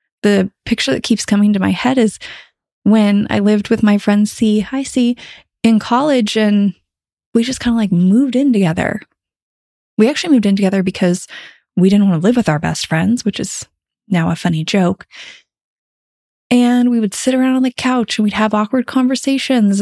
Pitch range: 195-245 Hz